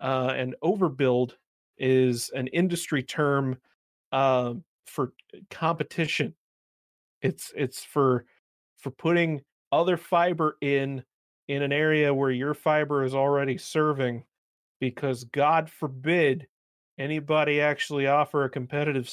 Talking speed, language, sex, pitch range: 110 wpm, English, male, 130-155 Hz